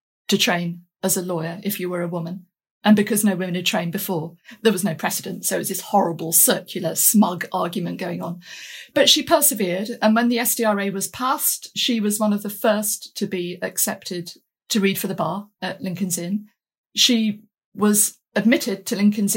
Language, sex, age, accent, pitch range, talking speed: English, female, 50-69, British, 180-225 Hz, 190 wpm